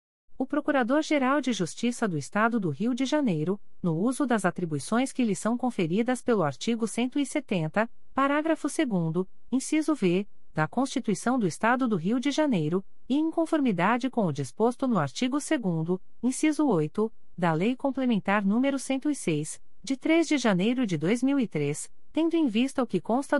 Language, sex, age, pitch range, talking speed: Portuguese, female, 40-59, 160-260 Hz, 160 wpm